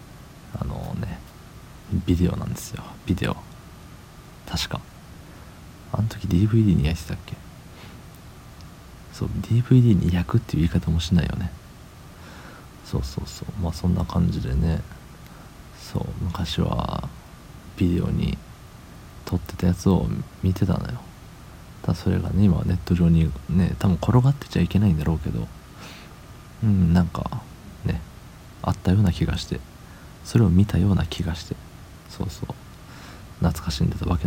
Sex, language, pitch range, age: male, Japanese, 85-100 Hz, 40-59